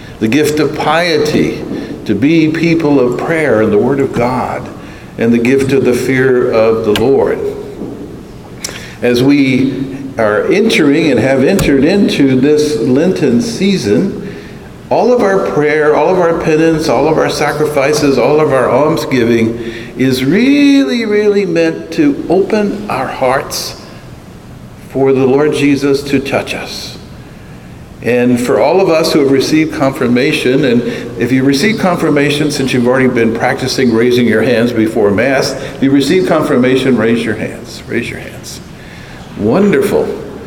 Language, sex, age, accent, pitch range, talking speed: English, male, 60-79, American, 125-160 Hz, 150 wpm